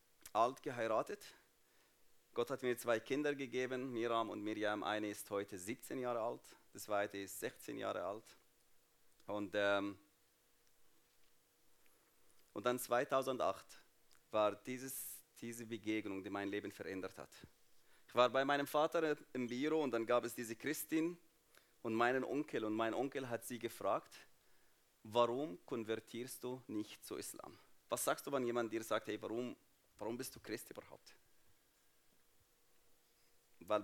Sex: male